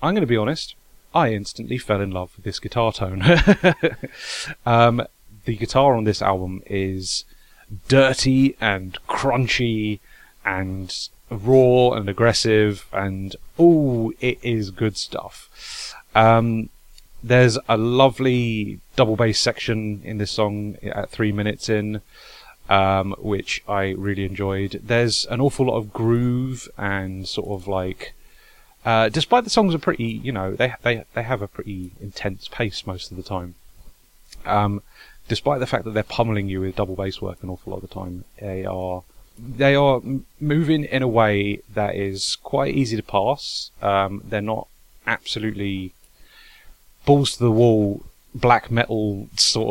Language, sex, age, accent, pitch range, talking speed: English, male, 30-49, British, 100-120 Hz, 150 wpm